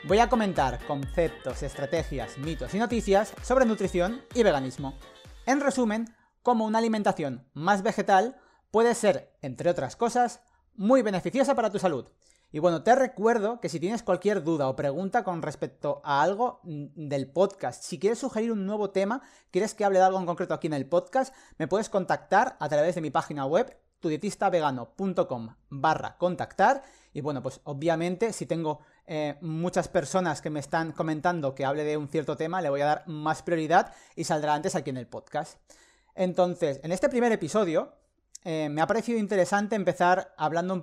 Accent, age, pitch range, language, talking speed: Spanish, 30-49, 150-205 Hz, Spanish, 175 wpm